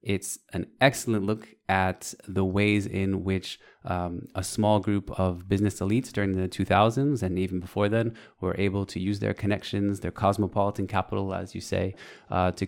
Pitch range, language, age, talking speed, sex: 95-105 Hz, Arabic, 20-39, 175 wpm, male